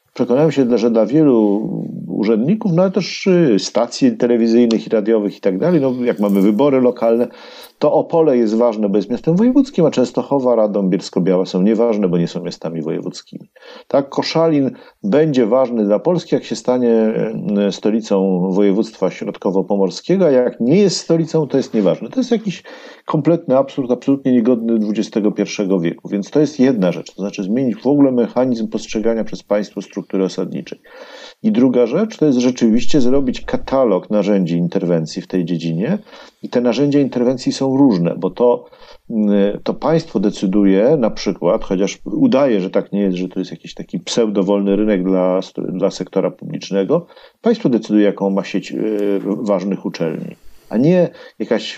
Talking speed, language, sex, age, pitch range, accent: 160 wpm, Polish, male, 50-69, 100-140 Hz, native